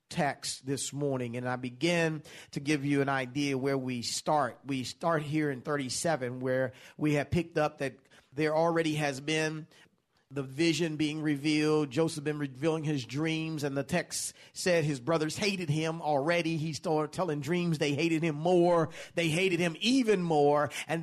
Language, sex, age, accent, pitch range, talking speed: English, male, 40-59, American, 135-170 Hz, 175 wpm